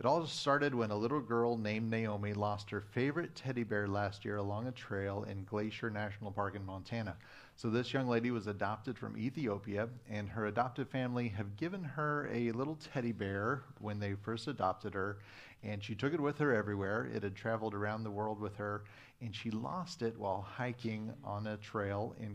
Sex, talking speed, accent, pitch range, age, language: male, 200 wpm, American, 100-115 Hz, 30-49, English